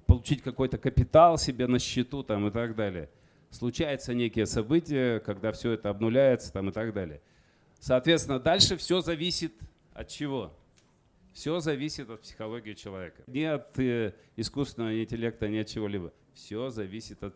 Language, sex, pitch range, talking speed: Russian, male, 105-135 Hz, 150 wpm